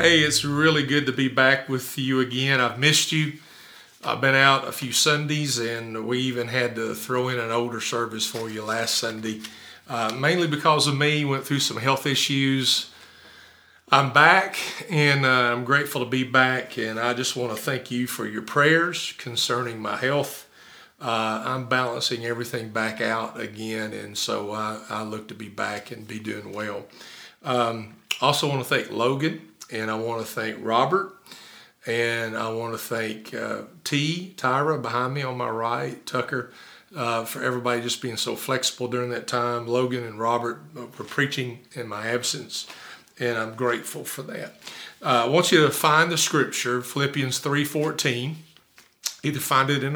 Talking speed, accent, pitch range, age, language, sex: 175 wpm, American, 115-135 Hz, 40-59, English, male